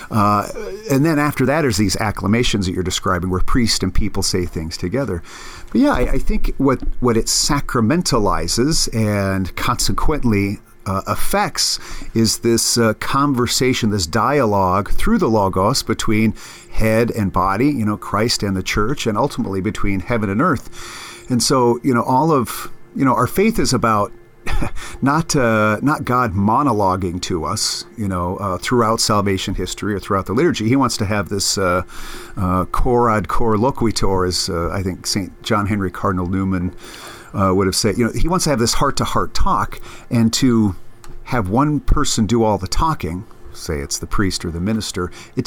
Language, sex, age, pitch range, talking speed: English, male, 50-69, 95-120 Hz, 180 wpm